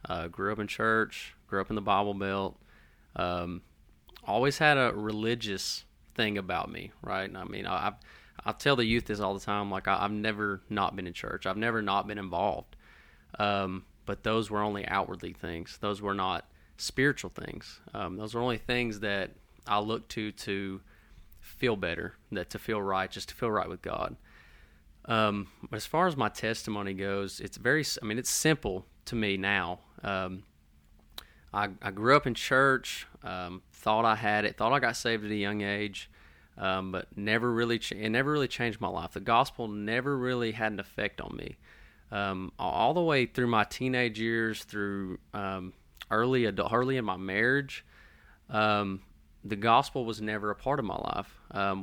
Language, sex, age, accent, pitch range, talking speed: English, male, 20-39, American, 90-110 Hz, 190 wpm